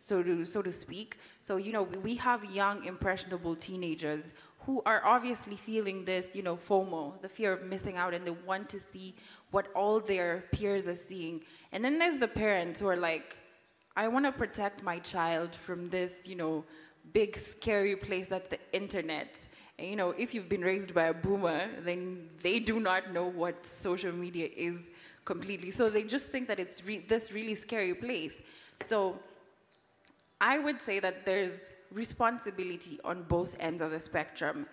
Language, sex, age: Greek, female, 20-39